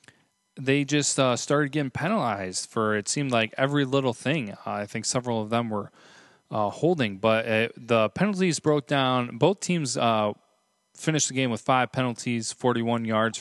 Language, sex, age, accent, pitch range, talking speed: English, male, 20-39, American, 105-130 Hz, 175 wpm